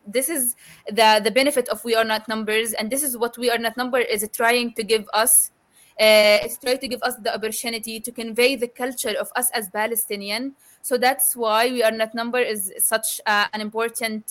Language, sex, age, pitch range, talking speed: English, female, 20-39, 220-250 Hz, 215 wpm